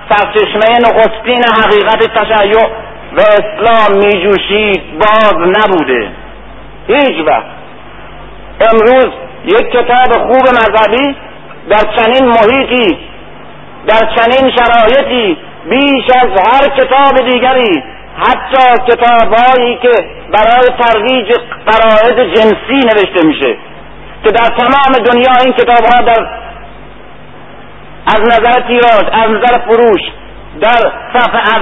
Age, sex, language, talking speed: 50-69, male, Persian, 100 wpm